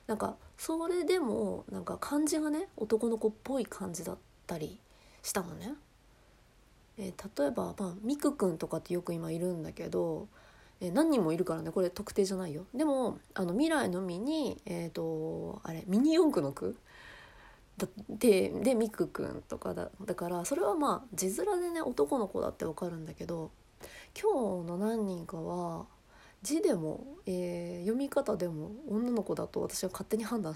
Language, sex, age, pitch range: Japanese, female, 30-49, 175-255 Hz